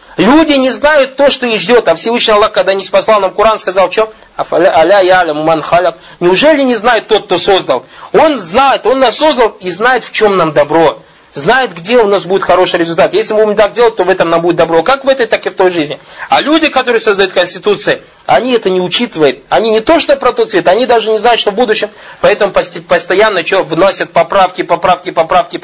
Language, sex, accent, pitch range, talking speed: Russian, male, native, 180-250 Hz, 210 wpm